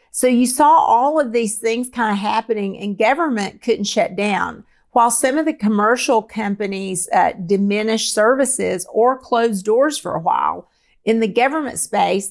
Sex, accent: female, American